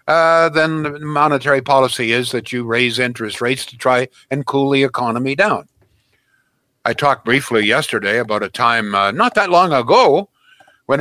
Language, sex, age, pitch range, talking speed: English, male, 60-79, 120-165 Hz, 170 wpm